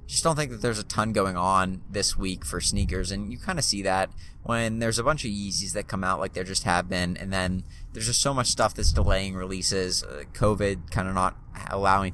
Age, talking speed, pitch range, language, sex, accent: 30-49, 240 wpm, 90-105 Hz, English, male, American